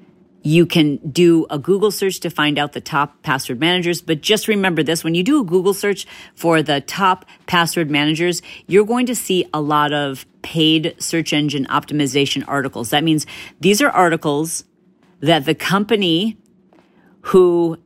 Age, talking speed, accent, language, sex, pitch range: 40-59, 165 wpm, American, English, female, 150-180 Hz